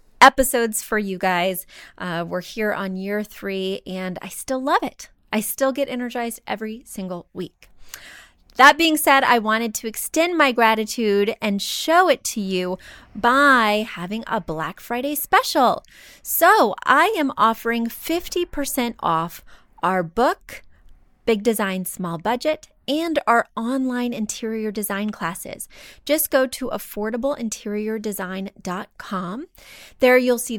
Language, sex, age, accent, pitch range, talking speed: English, female, 20-39, American, 195-255 Hz, 130 wpm